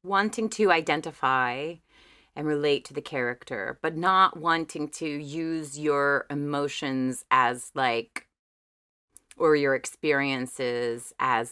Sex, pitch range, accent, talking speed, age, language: female, 145-195 Hz, American, 110 wpm, 30-49, English